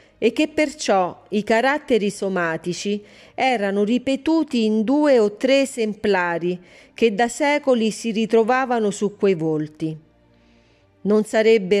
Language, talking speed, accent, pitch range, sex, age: Italian, 115 wpm, native, 180-230 Hz, female, 40-59